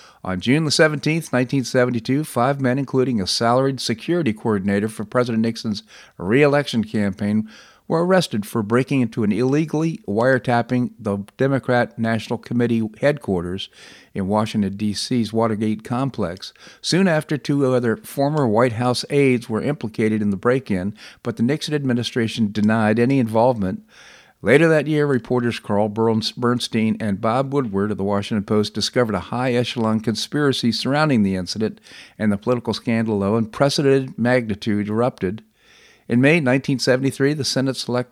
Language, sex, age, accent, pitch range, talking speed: English, male, 50-69, American, 110-130 Hz, 140 wpm